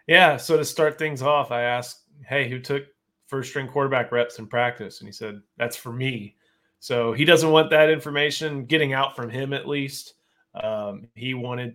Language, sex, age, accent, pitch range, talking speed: English, male, 30-49, American, 120-145 Hz, 195 wpm